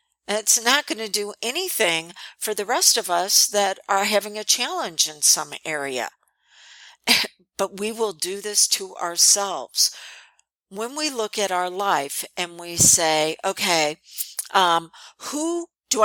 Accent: American